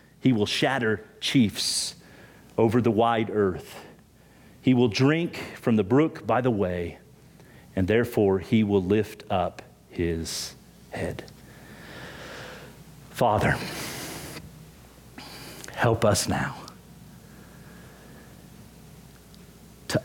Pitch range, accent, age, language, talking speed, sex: 95-115 Hz, American, 50-69, English, 90 wpm, male